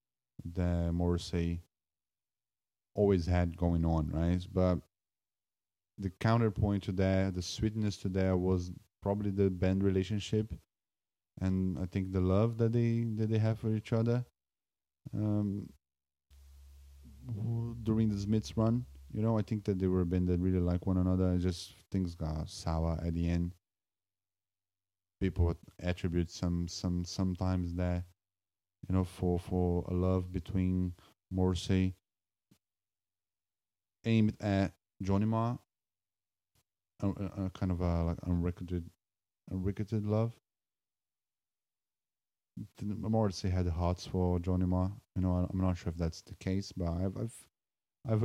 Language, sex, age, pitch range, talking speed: English, male, 20-39, 85-100 Hz, 130 wpm